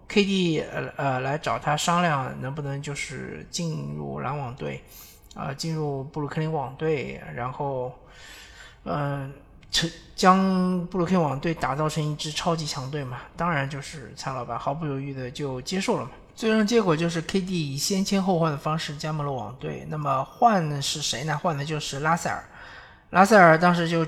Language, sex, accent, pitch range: Chinese, male, native, 140-170 Hz